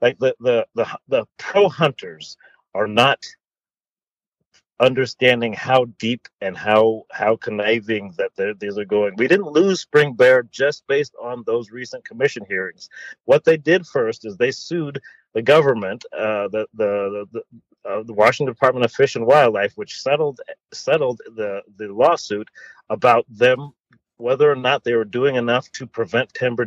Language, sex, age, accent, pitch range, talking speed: English, male, 40-59, American, 110-155 Hz, 160 wpm